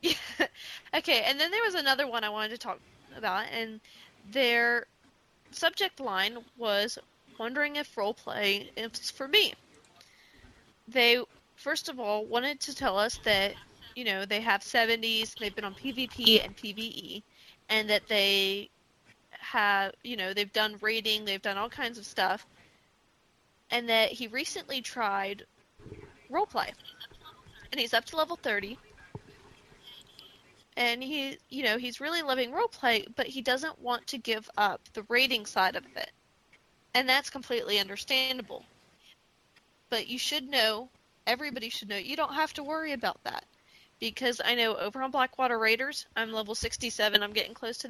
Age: 20-39